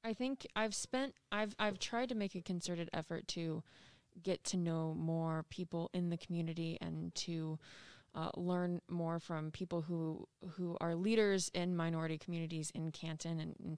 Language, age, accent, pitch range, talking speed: English, 20-39, American, 165-190 Hz, 170 wpm